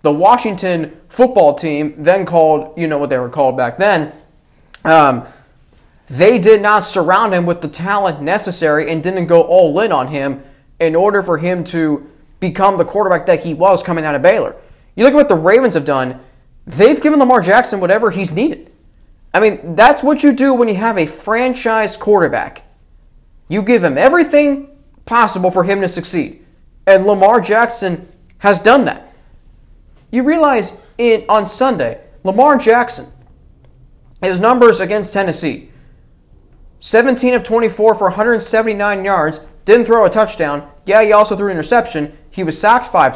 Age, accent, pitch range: 20-39, American, 160-225 Hz